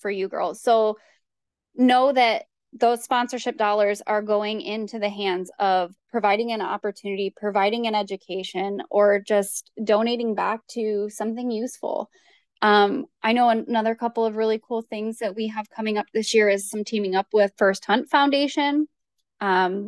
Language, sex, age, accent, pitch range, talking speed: English, female, 10-29, American, 205-240 Hz, 160 wpm